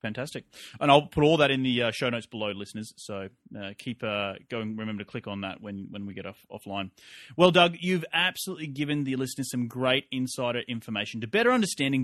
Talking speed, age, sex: 215 wpm, 30-49, male